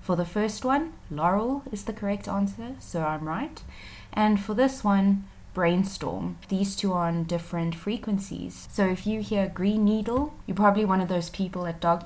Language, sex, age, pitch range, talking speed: English, female, 20-39, 160-210 Hz, 185 wpm